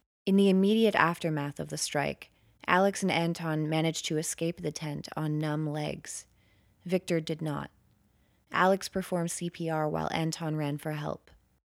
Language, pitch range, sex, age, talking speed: English, 150-185 Hz, female, 20-39, 150 wpm